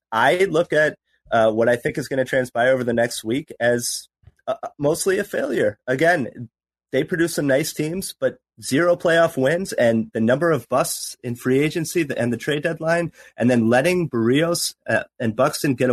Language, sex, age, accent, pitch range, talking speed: English, male, 30-49, American, 115-150 Hz, 190 wpm